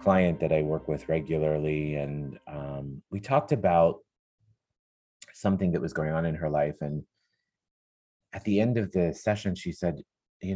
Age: 30-49